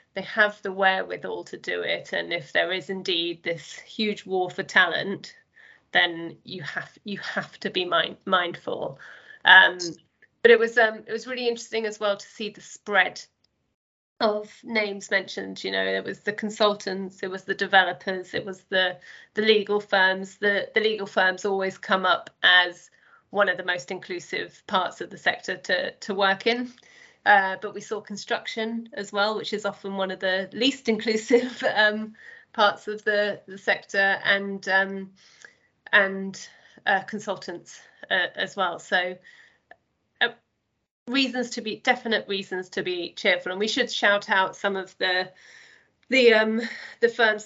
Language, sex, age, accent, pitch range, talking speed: English, female, 30-49, British, 190-220 Hz, 165 wpm